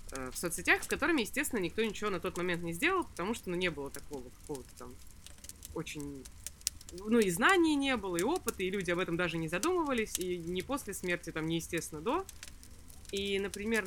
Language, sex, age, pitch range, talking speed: Russian, female, 20-39, 165-225 Hz, 200 wpm